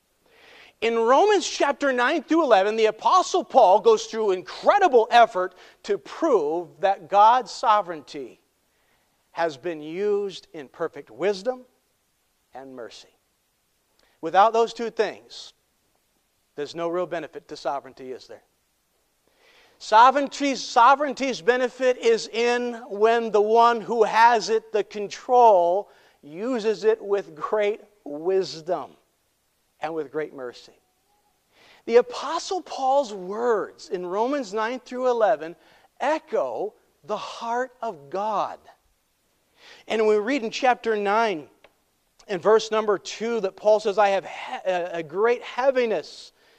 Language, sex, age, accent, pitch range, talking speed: English, male, 40-59, American, 190-260 Hz, 115 wpm